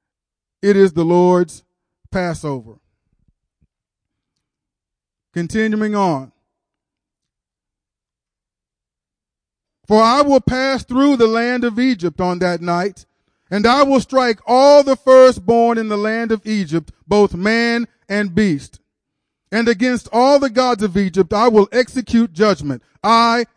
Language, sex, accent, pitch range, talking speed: English, male, American, 190-245 Hz, 120 wpm